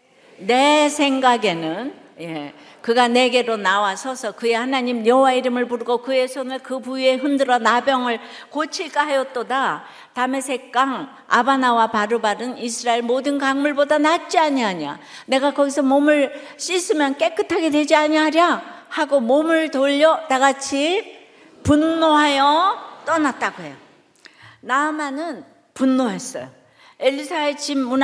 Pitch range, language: 235-295 Hz, Korean